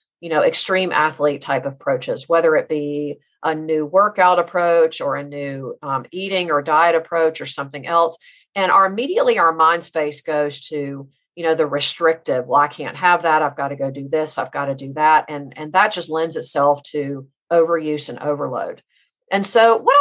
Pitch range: 145-180 Hz